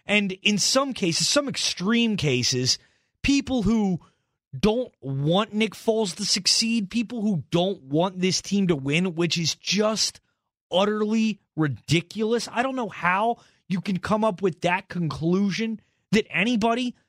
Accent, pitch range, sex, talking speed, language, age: American, 180-235 Hz, male, 145 wpm, English, 30-49